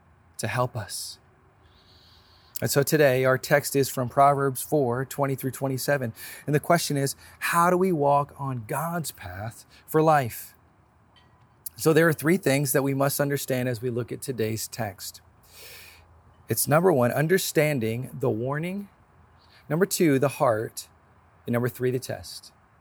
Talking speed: 155 wpm